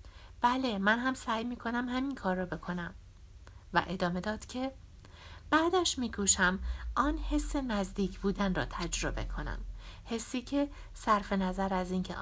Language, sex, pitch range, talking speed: Persian, female, 170-230 Hz, 135 wpm